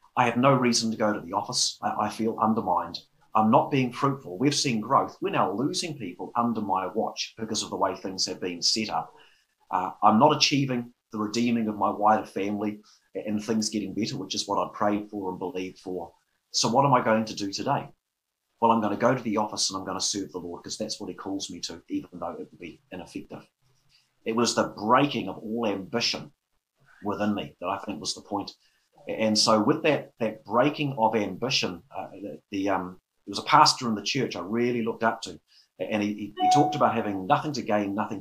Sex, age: male, 30-49